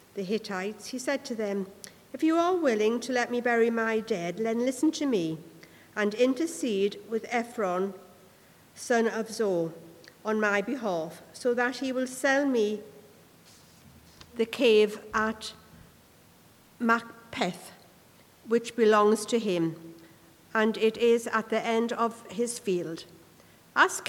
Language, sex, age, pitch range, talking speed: English, female, 50-69, 190-240 Hz, 135 wpm